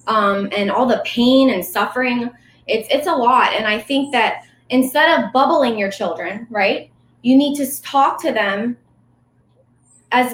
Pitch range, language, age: 200-245 Hz, English, 20-39